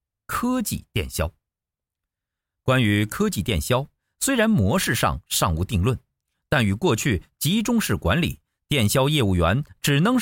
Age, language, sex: 50-69, Chinese, male